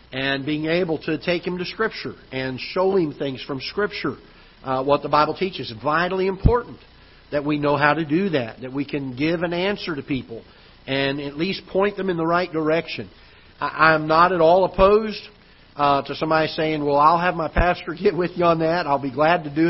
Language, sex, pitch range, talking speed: English, male, 145-180 Hz, 210 wpm